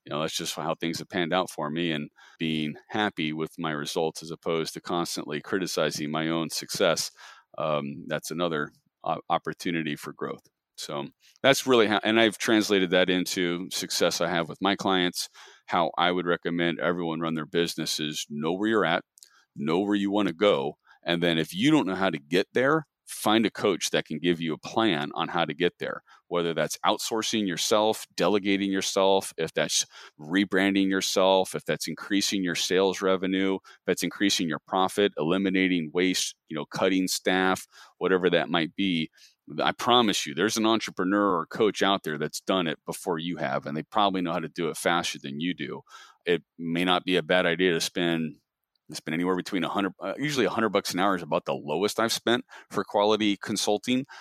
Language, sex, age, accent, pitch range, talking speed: English, male, 40-59, American, 80-95 Hz, 195 wpm